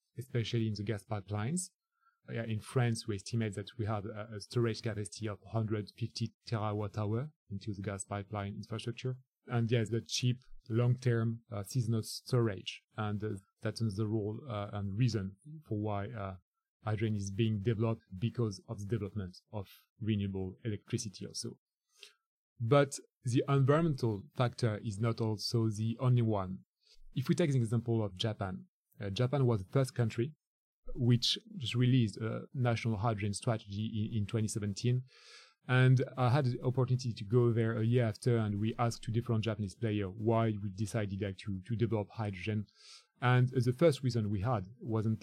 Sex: male